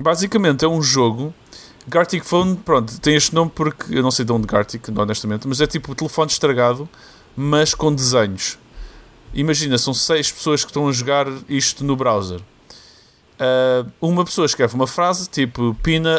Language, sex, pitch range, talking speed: Portuguese, male, 125-165 Hz, 170 wpm